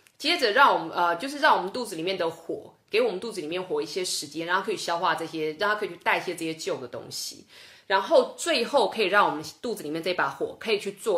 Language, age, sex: Chinese, 20-39, female